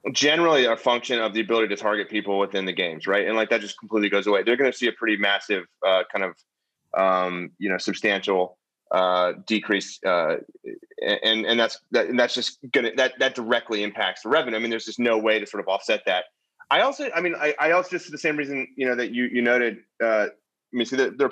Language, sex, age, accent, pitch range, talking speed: English, male, 30-49, American, 115-140 Hz, 250 wpm